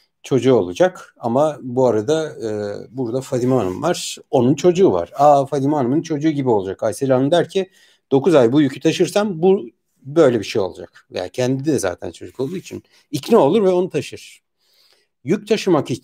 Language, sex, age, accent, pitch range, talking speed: Turkish, male, 60-79, native, 110-150 Hz, 180 wpm